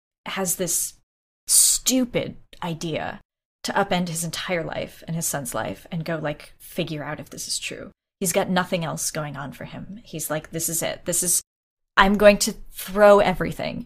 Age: 20-39